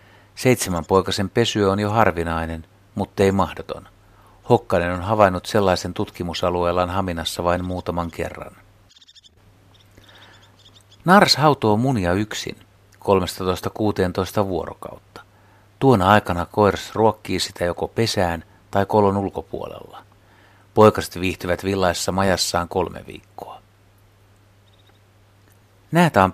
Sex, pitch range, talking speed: male, 90-105 Hz, 90 wpm